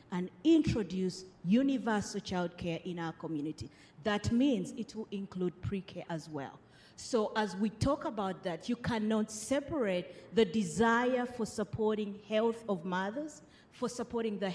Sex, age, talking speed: female, 30-49, 140 wpm